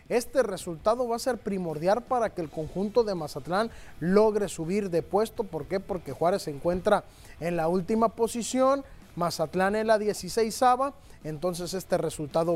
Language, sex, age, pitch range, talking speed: Spanish, male, 30-49, 175-225 Hz, 160 wpm